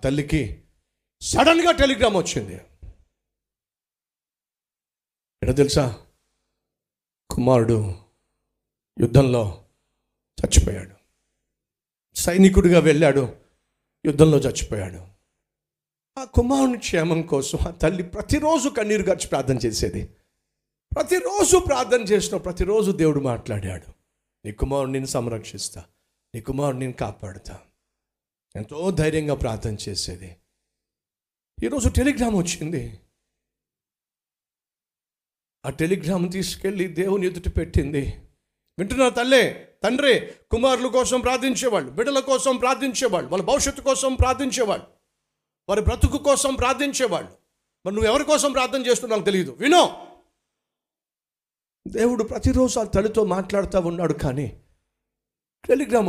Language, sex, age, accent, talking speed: Telugu, male, 50-69, native, 60 wpm